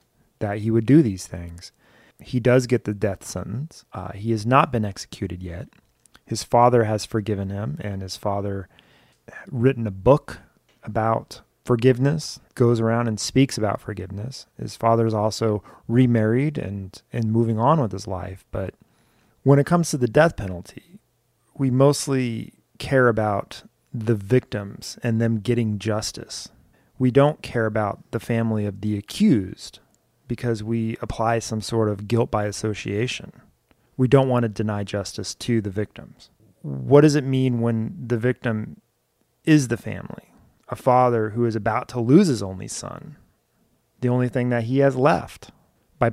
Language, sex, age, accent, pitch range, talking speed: English, male, 30-49, American, 105-130 Hz, 160 wpm